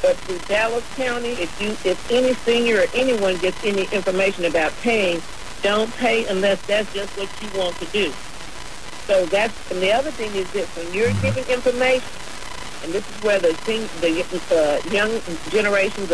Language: English